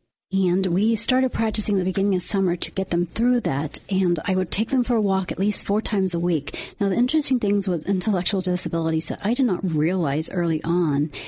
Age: 40-59